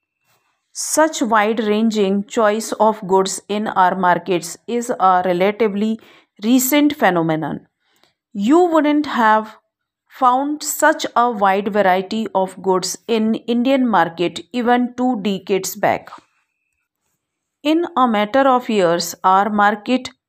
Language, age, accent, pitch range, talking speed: English, 50-69, Indian, 190-255 Hz, 110 wpm